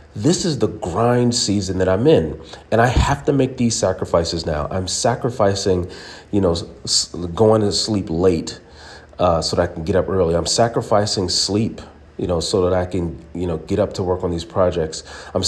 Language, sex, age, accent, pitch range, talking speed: English, male, 40-59, American, 90-115 Hz, 200 wpm